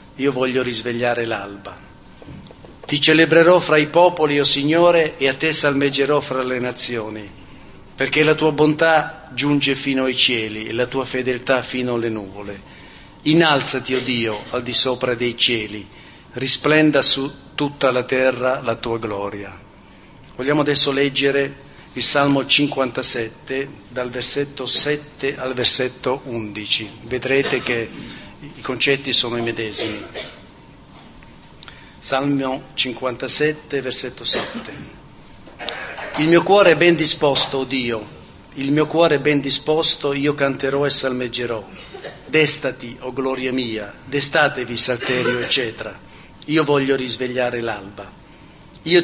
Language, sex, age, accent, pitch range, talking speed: Italian, male, 50-69, native, 120-145 Hz, 125 wpm